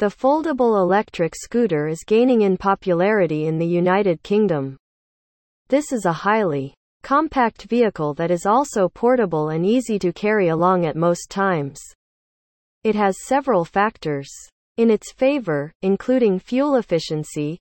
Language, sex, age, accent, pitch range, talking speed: English, female, 40-59, American, 165-230 Hz, 135 wpm